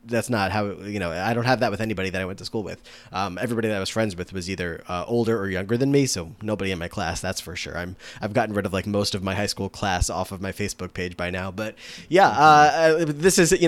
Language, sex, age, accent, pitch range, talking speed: English, male, 20-39, American, 100-135 Hz, 295 wpm